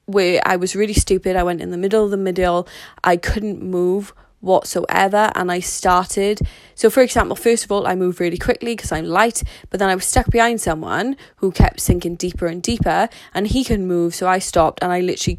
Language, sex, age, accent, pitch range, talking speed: English, female, 20-39, British, 170-200 Hz, 220 wpm